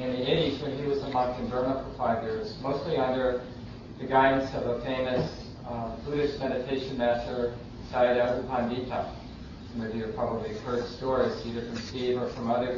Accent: American